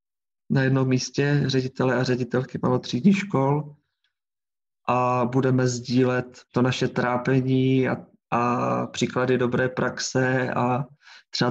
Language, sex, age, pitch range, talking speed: Czech, male, 20-39, 125-130 Hz, 110 wpm